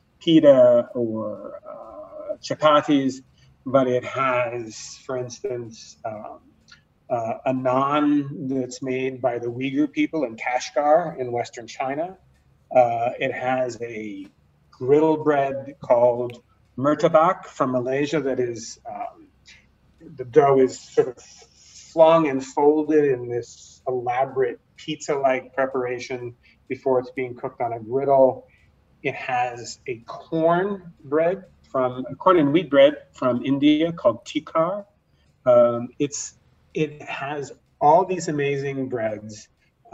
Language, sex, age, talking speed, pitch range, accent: English, male, 30-49, 115 wpm, 120-160 Hz, American